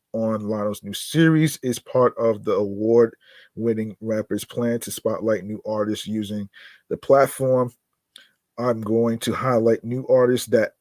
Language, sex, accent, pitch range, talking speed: English, male, American, 105-125 Hz, 140 wpm